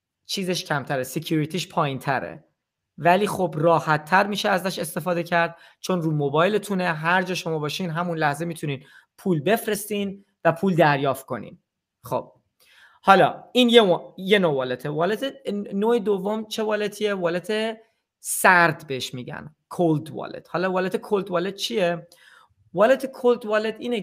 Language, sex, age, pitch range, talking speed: Persian, male, 30-49, 160-210 Hz, 140 wpm